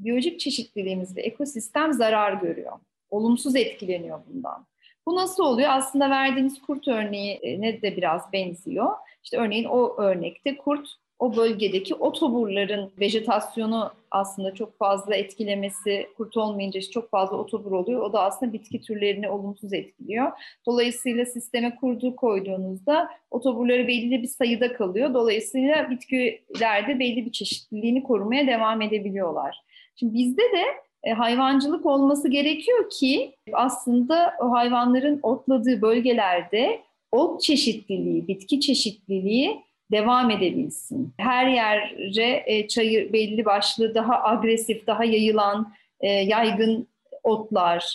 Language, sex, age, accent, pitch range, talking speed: Turkish, female, 40-59, native, 205-265 Hz, 115 wpm